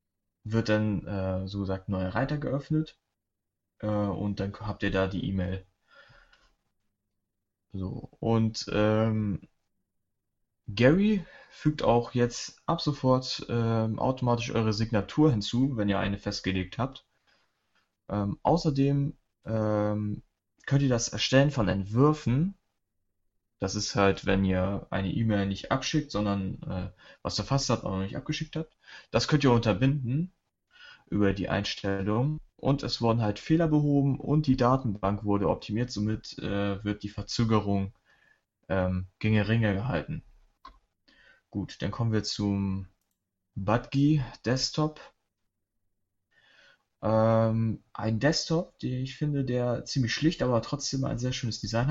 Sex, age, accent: male, 20-39, German